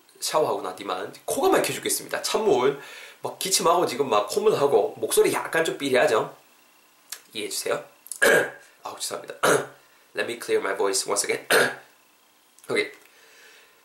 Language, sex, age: Korean, male, 20-39